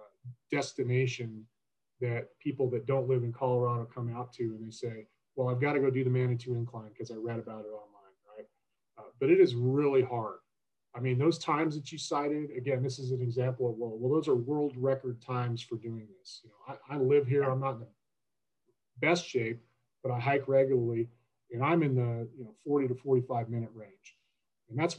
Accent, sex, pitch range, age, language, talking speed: American, male, 120-140 Hz, 30-49, English, 210 wpm